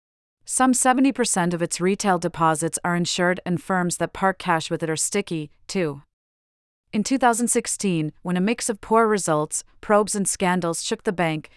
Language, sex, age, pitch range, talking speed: English, female, 40-59, 160-200 Hz, 165 wpm